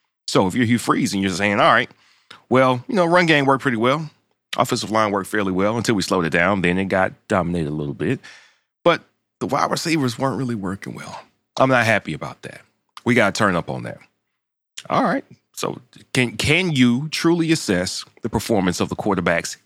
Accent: American